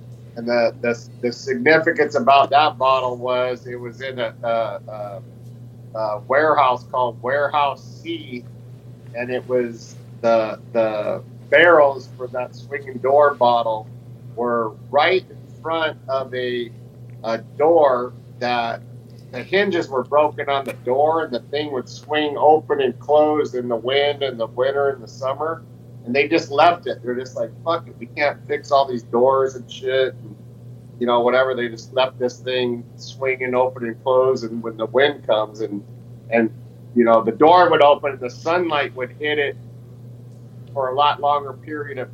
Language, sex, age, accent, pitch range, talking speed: English, male, 40-59, American, 120-135 Hz, 170 wpm